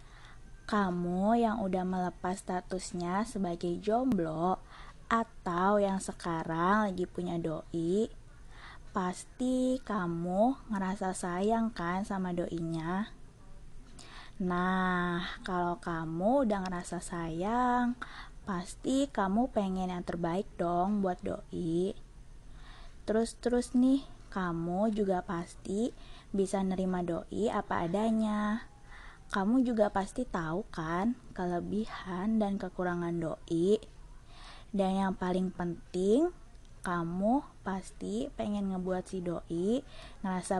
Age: 20-39